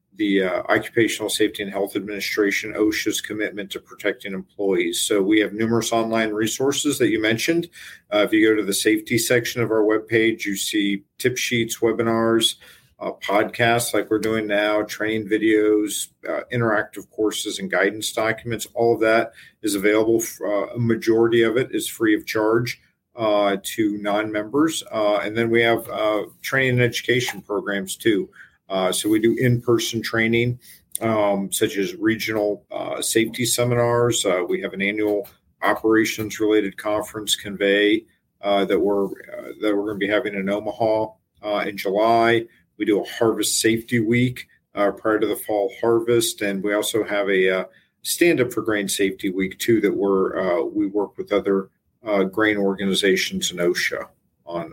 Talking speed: 165 wpm